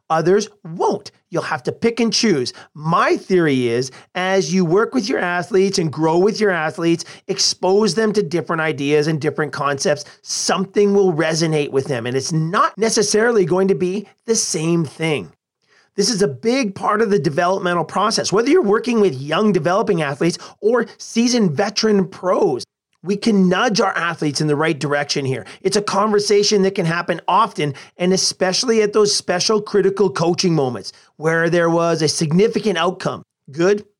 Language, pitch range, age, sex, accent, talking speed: English, 160-205 Hz, 40-59, male, American, 170 wpm